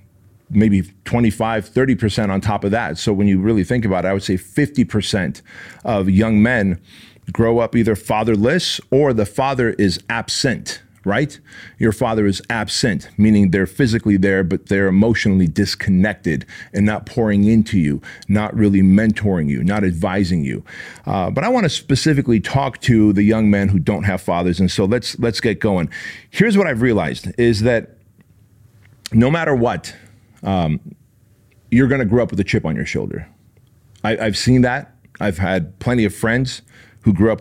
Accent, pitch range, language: American, 95-115 Hz, English